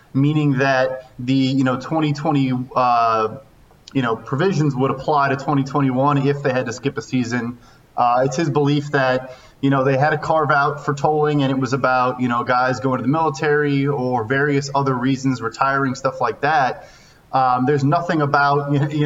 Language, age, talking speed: English, 20-39, 185 wpm